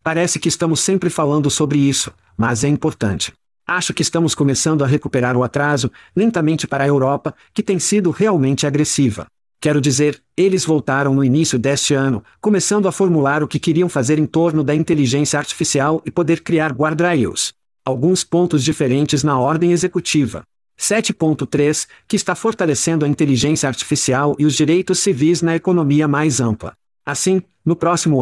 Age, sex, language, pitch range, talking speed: 50-69, male, Portuguese, 140-170 Hz, 160 wpm